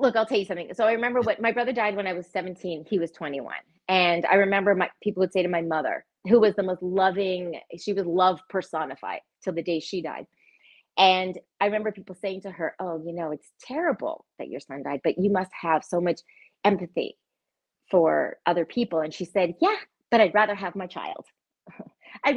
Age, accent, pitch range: 30-49, American, 185-240 Hz